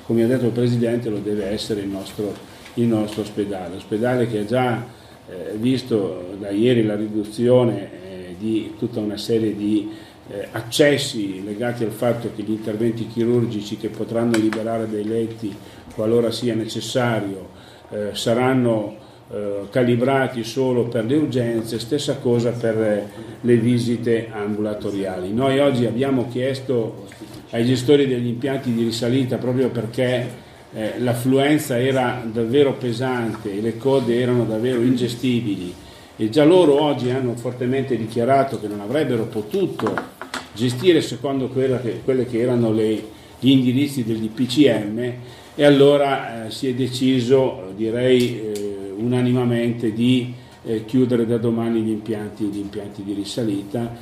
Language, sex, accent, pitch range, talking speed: Italian, male, native, 105-125 Hz, 140 wpm